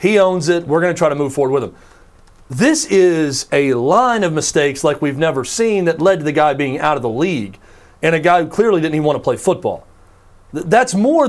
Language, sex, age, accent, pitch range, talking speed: English, male, 40-59, American, 130-190 Hz, 235 wpm